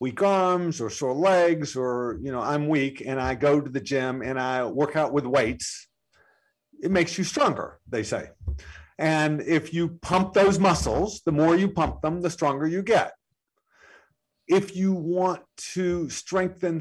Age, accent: 50-69, American